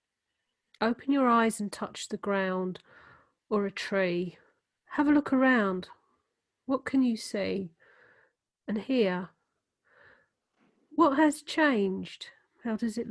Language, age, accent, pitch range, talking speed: English, 40-59, British, 200-270 Hz, 120 wpm